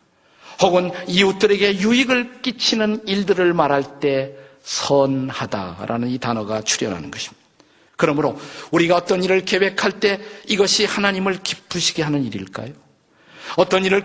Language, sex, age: Korean, male, 50-69